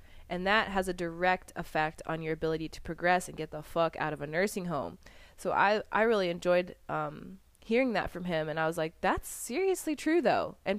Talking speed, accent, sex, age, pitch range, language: 215 wpm, American, female, 20-39, 170-225 Hz, English